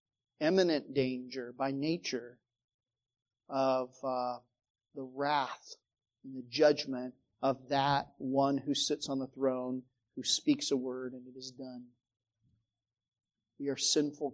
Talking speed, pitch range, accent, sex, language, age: 125 wpm, 130-155 Hz, American, male, English, 40-59